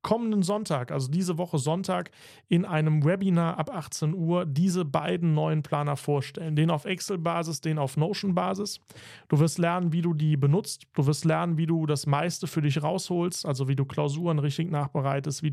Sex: male